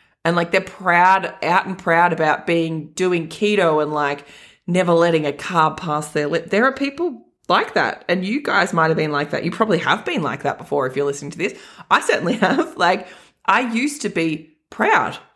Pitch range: 160-240 Hz